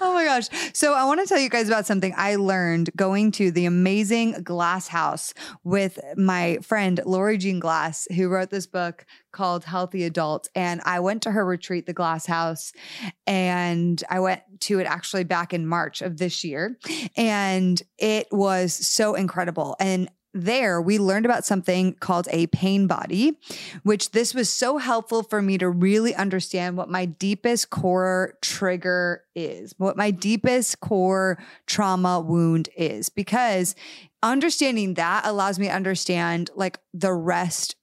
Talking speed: 160 wpm